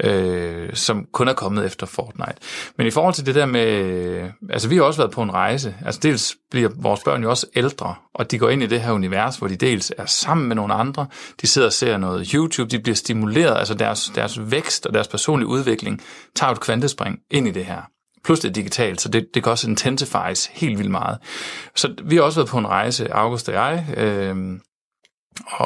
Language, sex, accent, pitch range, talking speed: Danish, male, native, 115-145 Hz, 220 wpm